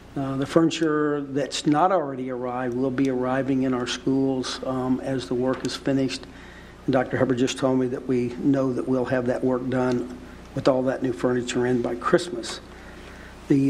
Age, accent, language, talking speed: 60-79, American, English, 190 wpm